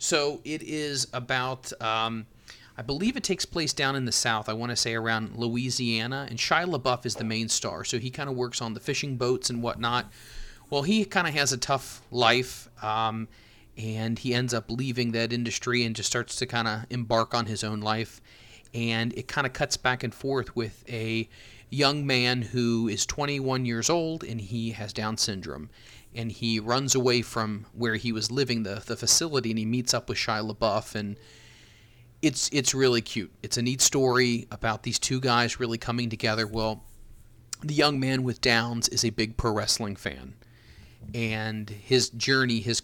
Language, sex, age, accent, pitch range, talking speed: English, male, 30-49, American, 110-125 Hz, 195 wpm